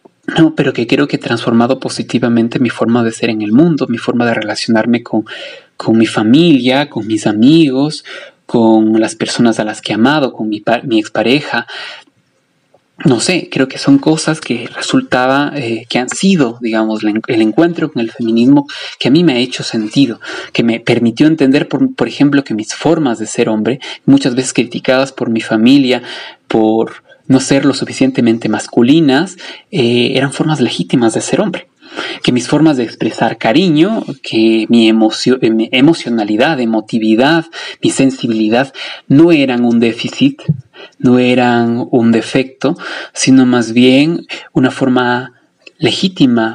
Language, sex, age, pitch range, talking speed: Spanish, male, 30-49, 115-140 Hz, 155 wpm